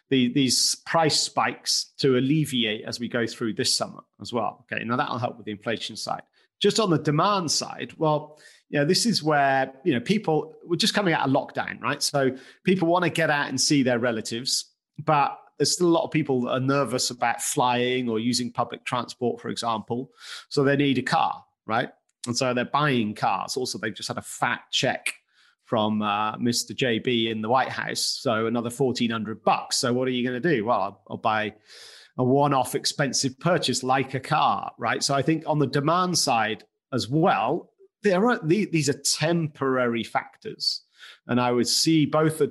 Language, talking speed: English, 200 wpm